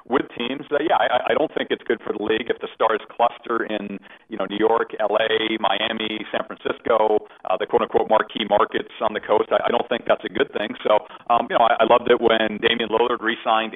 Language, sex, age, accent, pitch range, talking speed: English, male, 40-59, American, 110-120 Hz, 235 wpm